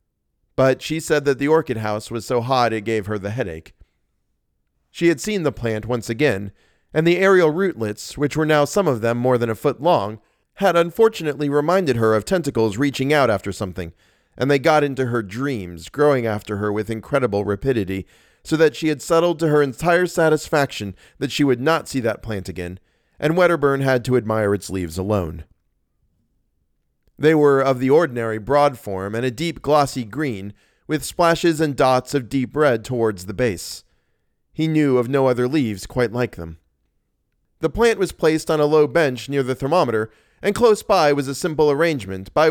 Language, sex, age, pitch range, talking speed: English, male, 40-59, 105-150 Hz, 190 wpm